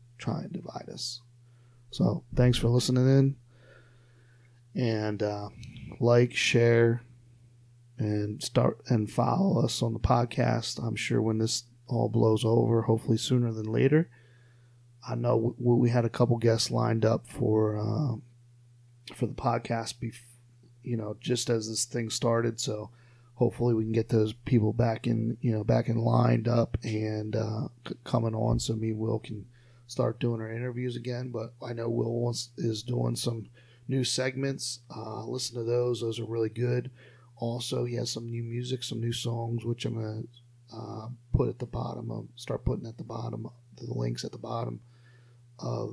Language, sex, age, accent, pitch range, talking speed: English, male, 30-49, American, 115-125 Hz, 170 wpm